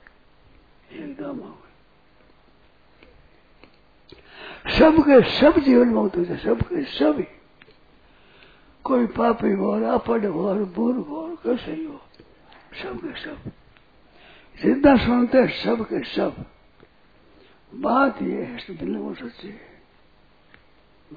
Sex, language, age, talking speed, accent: male, Hindi, 60-79, 90 wpm, native